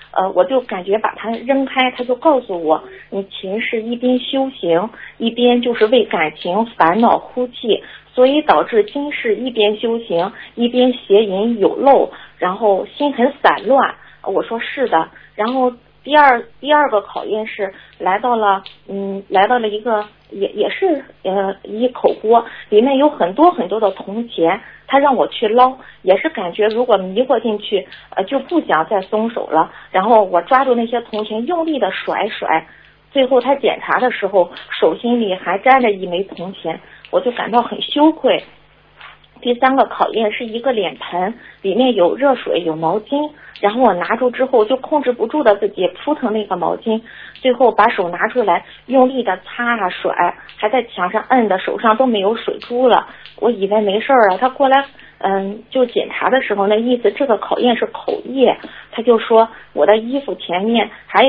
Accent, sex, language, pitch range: native, female, Chinese, 195-255 Hz